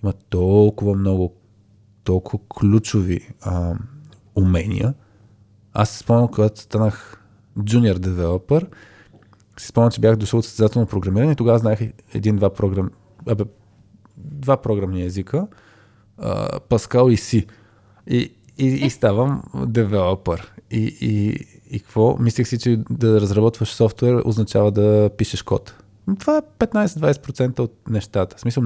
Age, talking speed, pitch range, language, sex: 20-39, 125 wpm, 100-120 Hz, Bulgarian, male